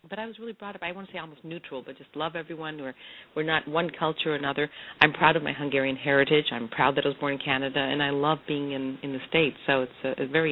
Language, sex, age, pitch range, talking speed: English, female, 40-59, 135-160 Hz, 285 wpm